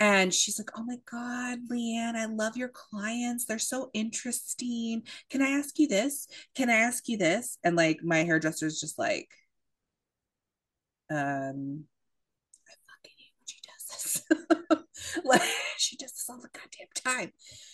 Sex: female